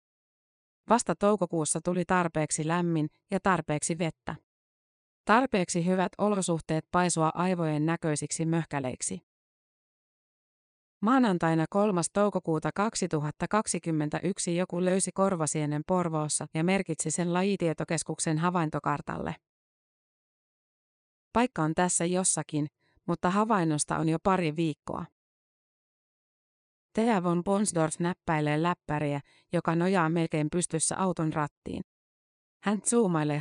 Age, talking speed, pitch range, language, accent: 30-49, 90 wpm, 155-185 Hz, Finnish, native